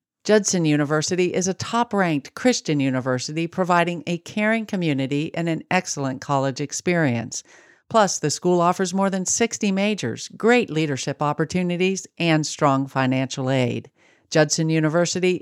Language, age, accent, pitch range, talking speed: English, 50-69, American, 140-185 Hz, 130 wpm